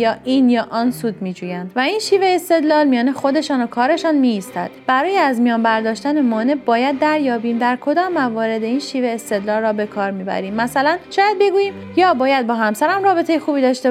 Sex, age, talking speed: female, 30-49, 195 wpm